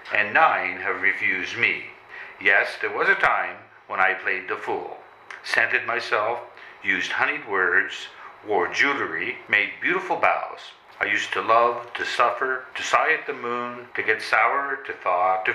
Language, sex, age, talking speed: English, male, 60-79, 160 wpm